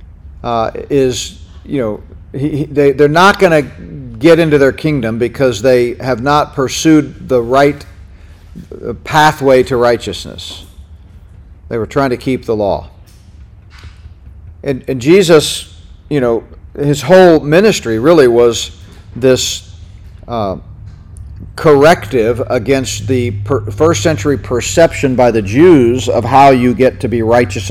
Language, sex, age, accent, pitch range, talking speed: English, male, 40-59, American, 95-140 Hz, 125 wpm